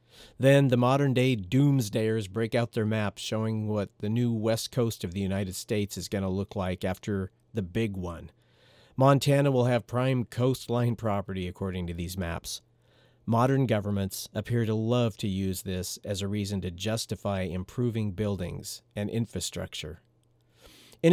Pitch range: 100-125 Hz